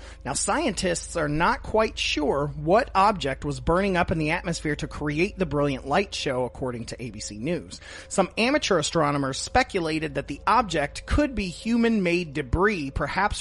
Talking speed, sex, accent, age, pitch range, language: 160 wpm, male, American, 30-49, 130-180 Hz, English